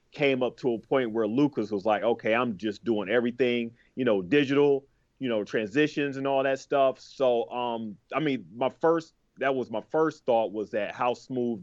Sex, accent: male, American